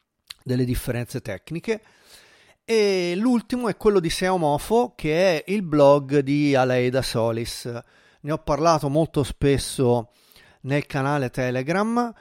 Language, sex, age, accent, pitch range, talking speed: Italian, male, 40-59, native, 120-160 Hz, 125 wpm